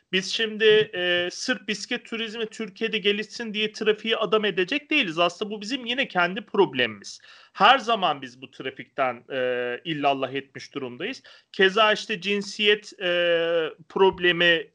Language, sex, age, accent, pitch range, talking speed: English, male, 40-59, Turkish, 160-225 Hz, 135 wpm